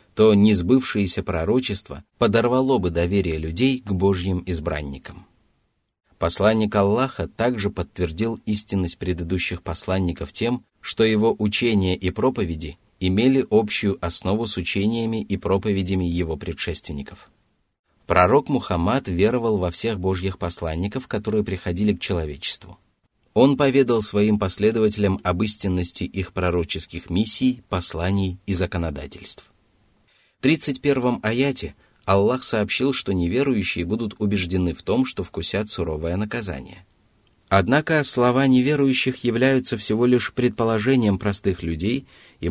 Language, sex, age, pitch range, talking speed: Russian, male, 30-49, 90-115 Hz, 115 wpm